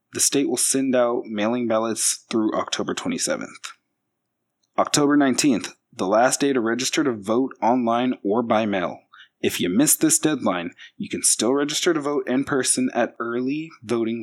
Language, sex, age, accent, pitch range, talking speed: English, male, 20-39, American, 110-140 Hz, 165 wpm